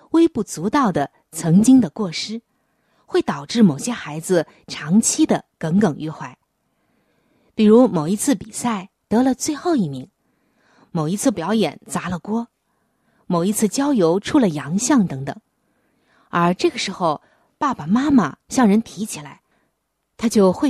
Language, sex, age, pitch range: Chinese, female, 20-39, 170-250 Hz